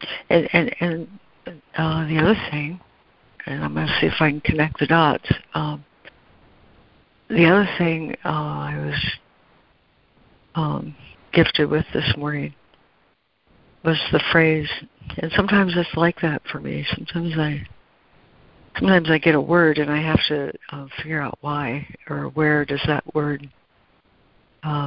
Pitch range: 145-165 Hz